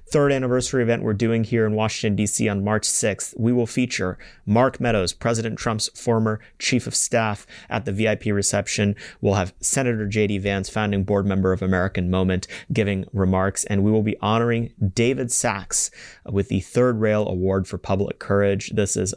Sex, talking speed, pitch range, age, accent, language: male, 180 wpm, 90-110 Hz, 30-49, American, English